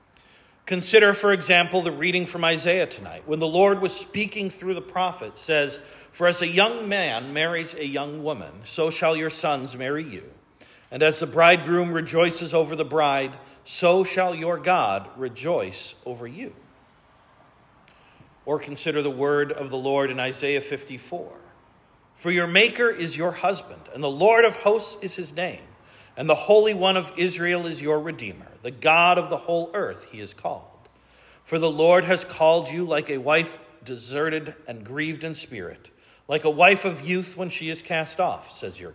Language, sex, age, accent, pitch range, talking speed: English, male, 50-69, American, 145-180 Hz, 175 wpm